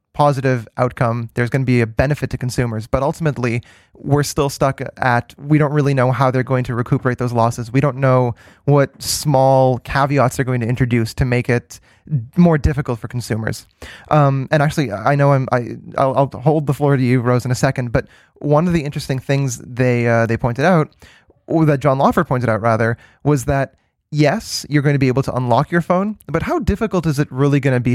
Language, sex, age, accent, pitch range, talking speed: English, male, 20-39, American, 120-145 Hz, 215 wpm